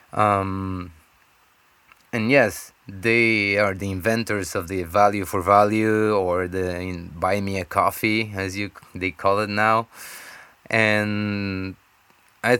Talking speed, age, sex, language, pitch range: 105 wpm, 20-39, male, English, 90-105 Hz